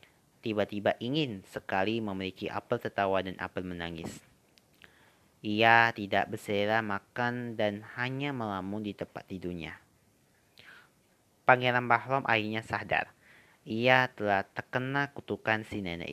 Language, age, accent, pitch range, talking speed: Indonesian, 30-49, native, 95-115 Hz, 110 wpm